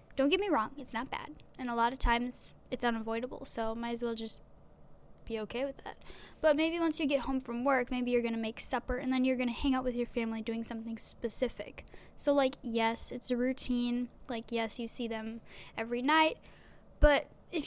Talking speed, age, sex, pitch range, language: 220 wpm, 10-29, female, 235-285 Hz, English